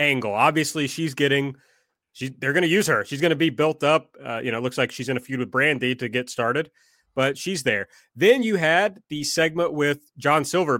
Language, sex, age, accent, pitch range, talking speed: English, male, 30-49, American, 135-185 Hz, 235 wpm